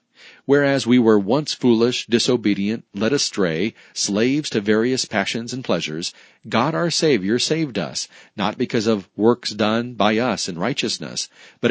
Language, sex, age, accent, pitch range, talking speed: English, male, 40-59, American, 105-135 Hz, 150 wpm